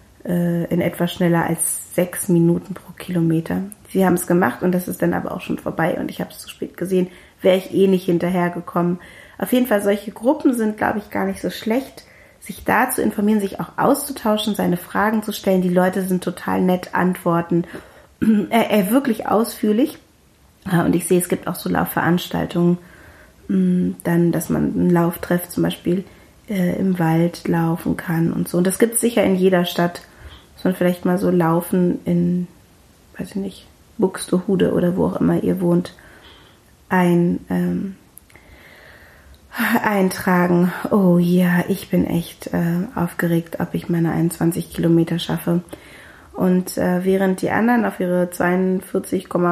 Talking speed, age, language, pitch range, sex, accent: 165 wpm, 30-49, German, 170-195 Hz, female, German